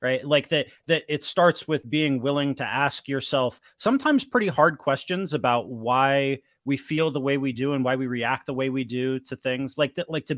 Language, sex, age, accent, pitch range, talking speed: English, male, 30-49, American, 130-155 Hz, 220 wpm